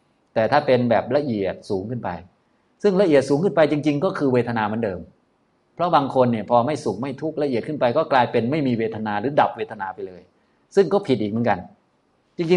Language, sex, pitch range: Thai, male, 115-150 Hz